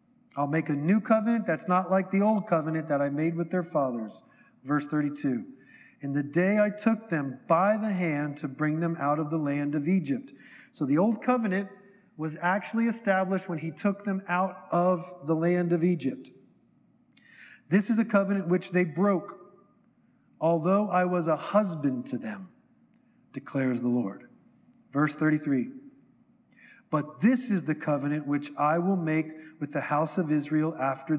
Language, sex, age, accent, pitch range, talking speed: English, male, 40-59, American, 150-205 Hz, 170 wpm